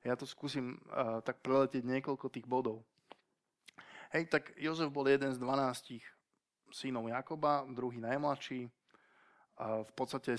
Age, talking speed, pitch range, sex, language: 20-39, 135 wpm, 115-135 Hz, male, Slovak